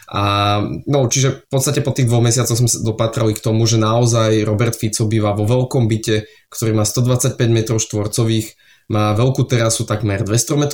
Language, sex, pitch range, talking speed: Slovak, male, 110-125 Hz, 180 wpm